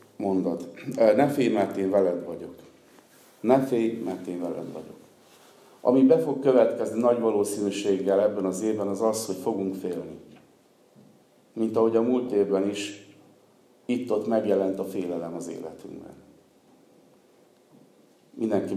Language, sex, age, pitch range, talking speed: Hungarian, male, 50-69, 95-110 Hz, 130 wpm